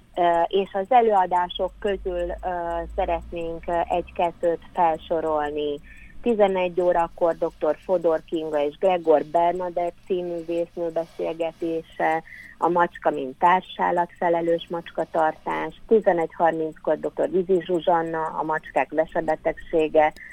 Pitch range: 155-180 Hz